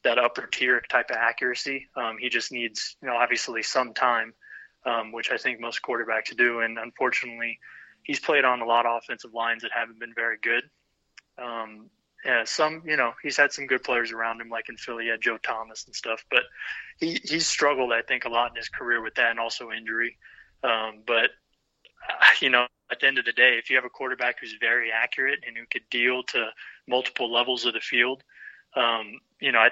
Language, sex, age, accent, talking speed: English, male, 20-39, American, 210 wpm